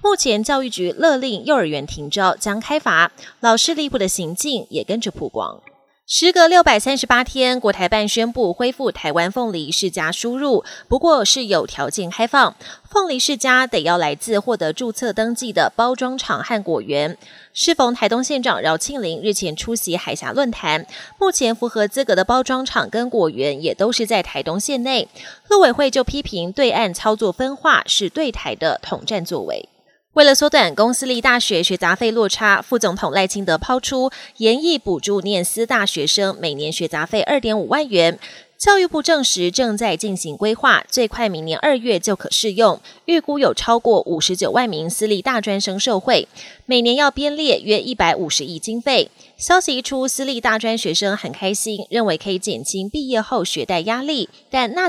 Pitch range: 190-260 Hz